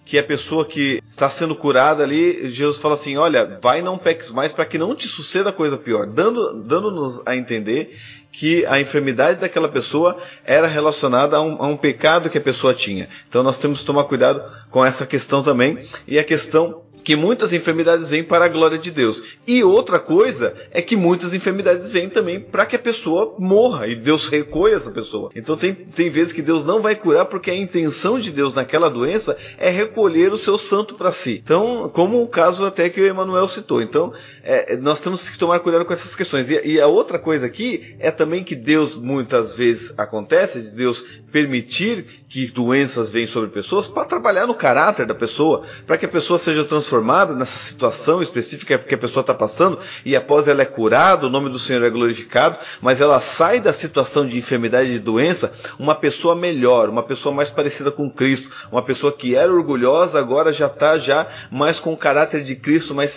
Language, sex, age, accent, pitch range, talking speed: Portuguese, male, 30-49, Brazilian, 135-175 Hz, 200 wpm